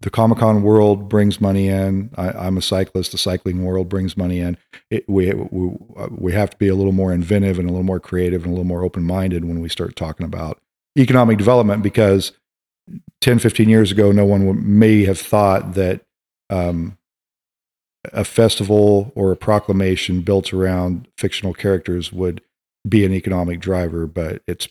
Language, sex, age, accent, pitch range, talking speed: English, male, 40-59, American, 90-110 Hz, 175 wpm